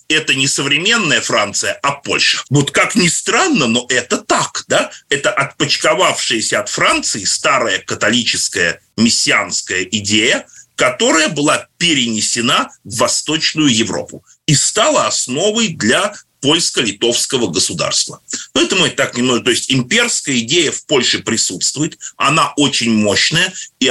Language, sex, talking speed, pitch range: Russian, male, 125 wpm, 120-190 Hz